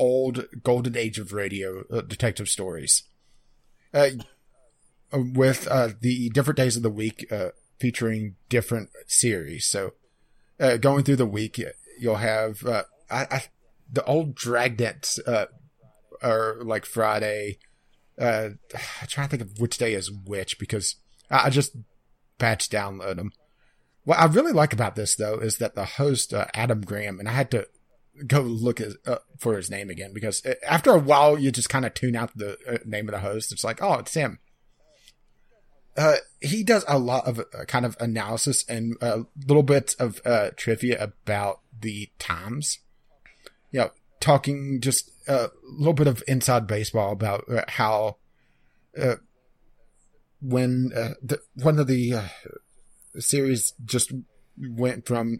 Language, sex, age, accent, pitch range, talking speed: English, male, 30-49, American, 110-130 Hz, 160 wpm